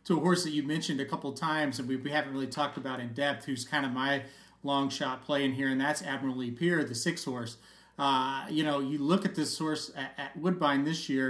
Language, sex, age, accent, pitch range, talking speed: English, male, 40-59, American, 135-175 Hz, 250 wpm